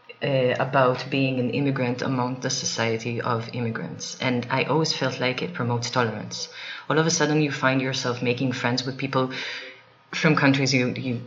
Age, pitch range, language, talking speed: 30-49, 130-175 Hz, Bulgarian, 175 wpm